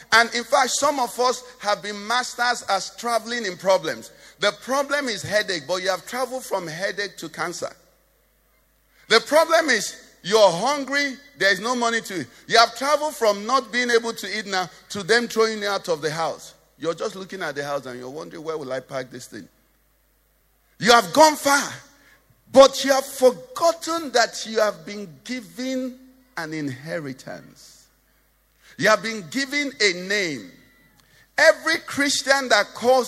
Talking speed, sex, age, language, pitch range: 170 wpm, male, 50-69, English, 200-270 Hz